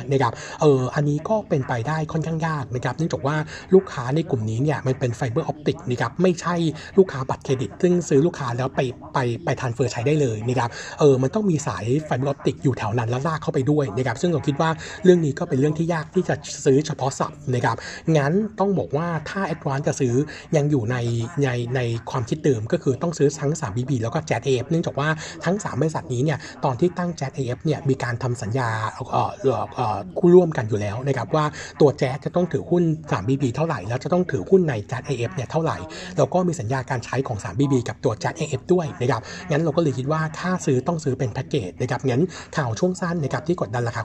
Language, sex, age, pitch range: Thai, male, 60-79, 125-160 Hz